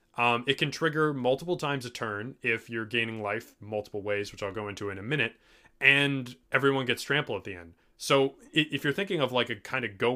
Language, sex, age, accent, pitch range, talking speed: English, male, 20-39, American, 105-130 Hz, 225 wpm